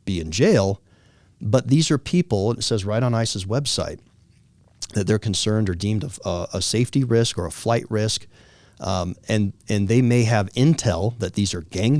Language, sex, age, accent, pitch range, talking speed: English, male, 40-59, American, 100-125 Hz, 185 wpm